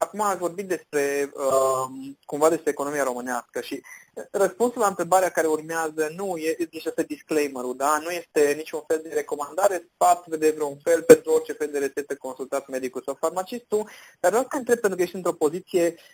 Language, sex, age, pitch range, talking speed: Romanian, male, 30-49, 135-180 Hz, 185 wpm